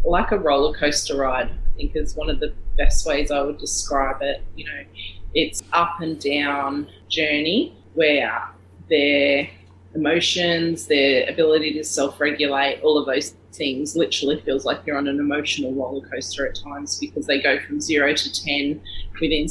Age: 30-49